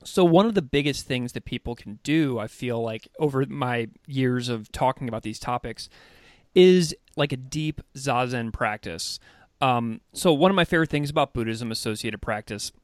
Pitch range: 115-160 Hz